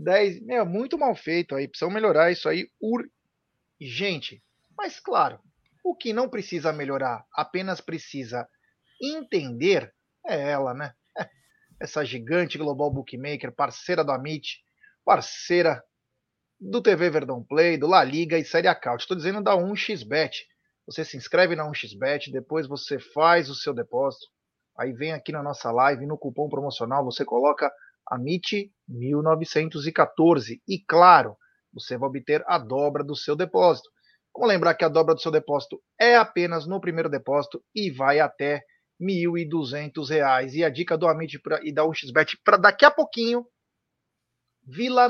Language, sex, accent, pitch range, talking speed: Portuguese, male, Brazilian, 145-200 Hz, 150 wpm